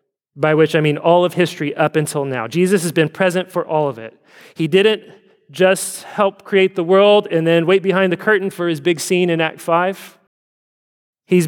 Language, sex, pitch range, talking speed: English, male, 165-225 Hz, 205 wpm